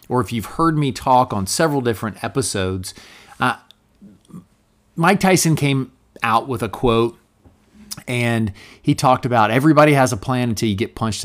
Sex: male